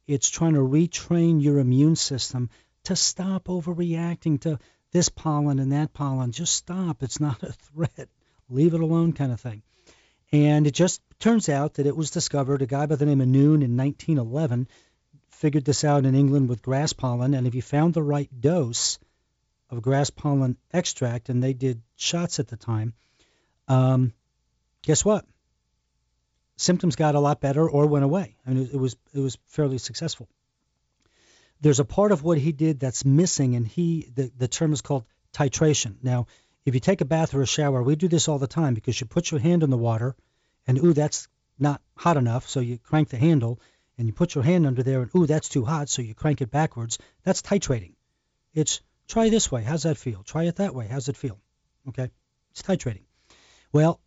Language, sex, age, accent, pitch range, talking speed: English, male, 40-59, American, 125-160 Hz, 200 wpm